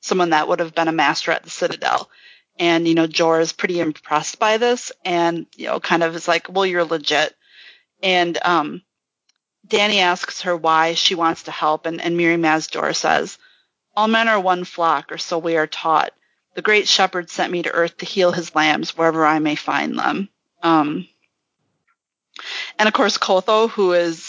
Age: 30-49